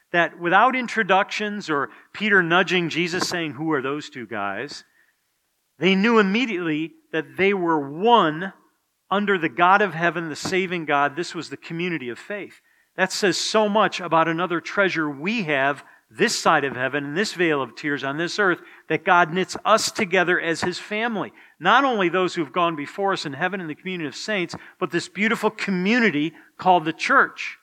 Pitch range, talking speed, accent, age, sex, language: 160-200 Hz, 185 wpm, American, 50-69, male, English